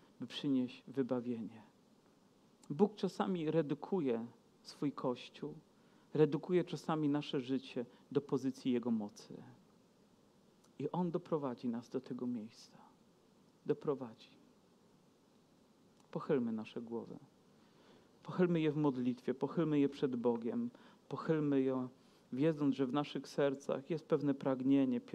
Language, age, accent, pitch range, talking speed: Polish, 40-59, native, 130-160 Hz, 105 wpm